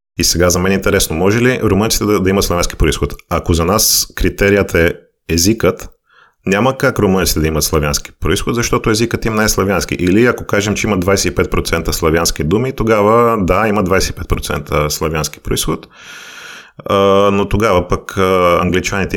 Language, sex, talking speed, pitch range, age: Bulgarian, male, 160 wpm, 80-100 Hz, 30-49